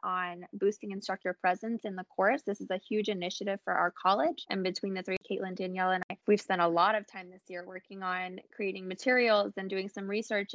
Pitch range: 185-215 Hz